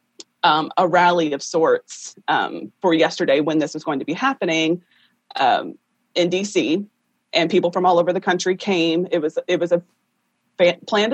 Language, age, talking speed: English, 30-49, 170 wpm